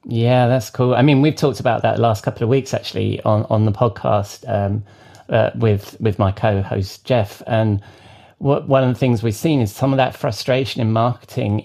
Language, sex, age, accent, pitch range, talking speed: English, male, 30-49, British, 110-135 Hz, 210 wpm